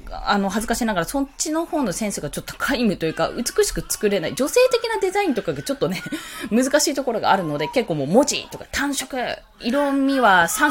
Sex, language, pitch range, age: female, Japanese, 195-320 Hz, 20-39